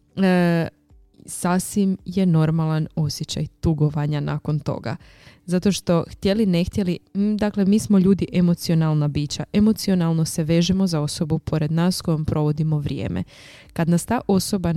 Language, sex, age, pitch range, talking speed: Croatian, female, 20-39, 160-190 Hz, 140 wpm